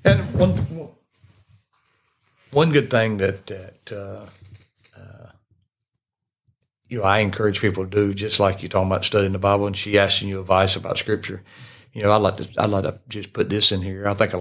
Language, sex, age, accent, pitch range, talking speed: English, male, 60-79, American, 95-110 Hz, 195 wpm